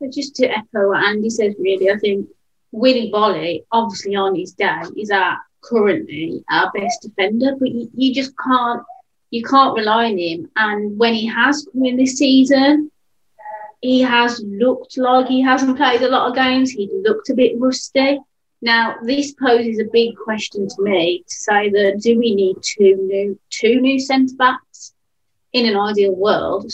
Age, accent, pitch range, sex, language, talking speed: 30-49, British, 205-255 Hz, female, English, 175 wpm